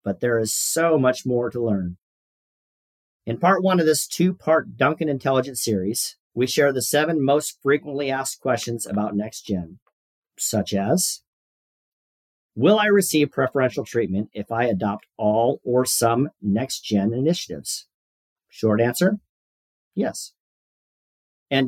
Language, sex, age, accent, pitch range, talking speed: English, male, 50-69, American, 110-150 Hz, 125 wpm